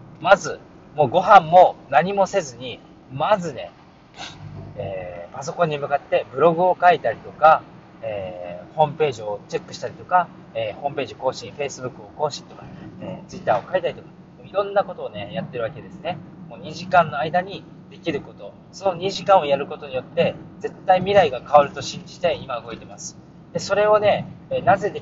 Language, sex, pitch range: Japanese, male, 155-195 Hz